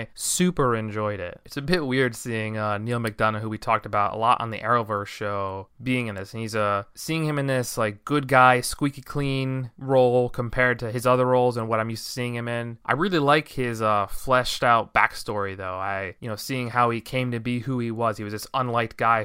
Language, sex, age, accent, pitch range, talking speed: English, male, 20-39, American, 105-125 Hz, 240 wpm